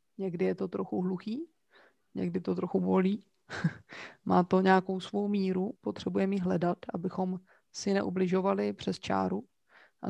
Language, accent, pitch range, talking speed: Czech, native, 175-205 Hz, 135 wpm